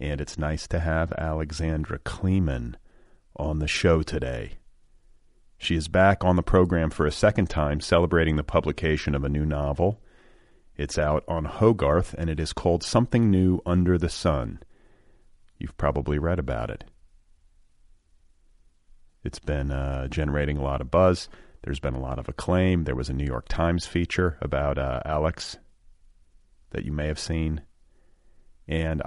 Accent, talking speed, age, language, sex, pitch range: American, 155 wpm, 40-59, English, male, 75-90 Hz